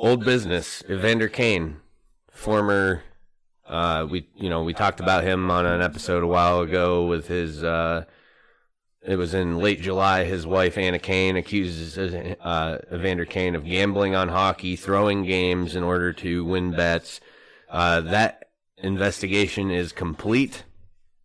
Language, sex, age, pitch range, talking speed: English, male, 30-49, 85-95 Hz, 145 wpm